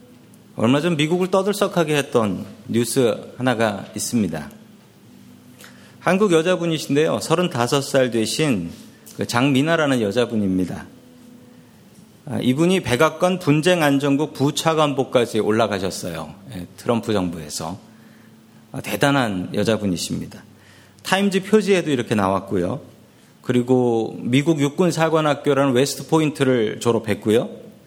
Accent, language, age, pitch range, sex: native, Korean, 40-59, 115-165 Hz, male